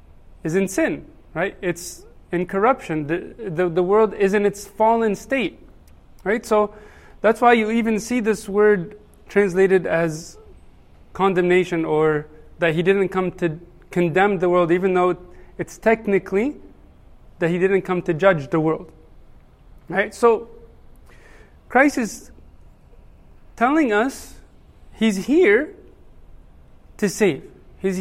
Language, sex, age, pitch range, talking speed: English, male, 30-49, 155-210 Hz, 130 wpm